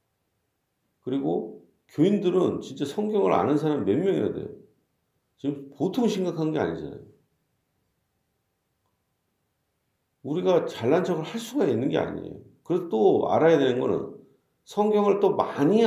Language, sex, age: Korean, male, 50-69